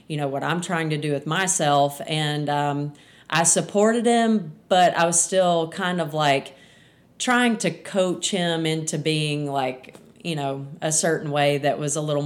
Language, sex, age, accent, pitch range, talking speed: English, female, 30-49, American, 145-180 Hz, 180 wpm